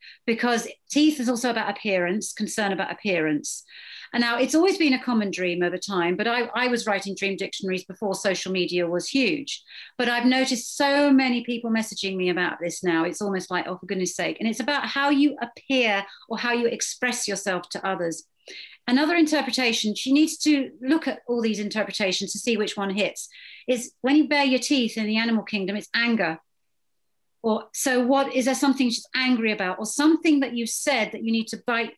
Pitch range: 195-255 Hz